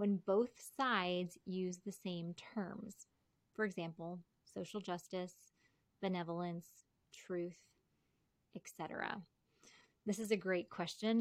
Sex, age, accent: female, 20-39, American